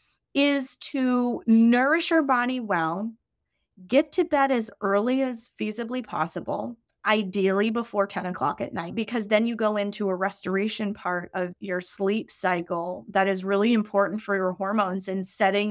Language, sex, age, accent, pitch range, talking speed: English, female, 20-39, American, 190-230 Hz, 155 wpm